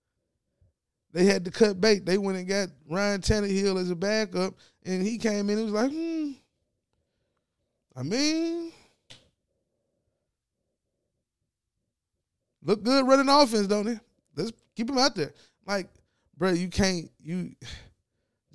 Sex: male